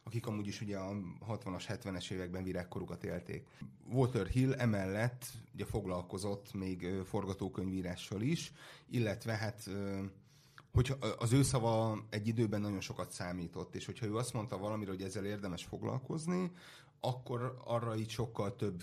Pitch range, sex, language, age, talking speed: 95-120 Hz, male, Hungarian, 30-49, 135 wpm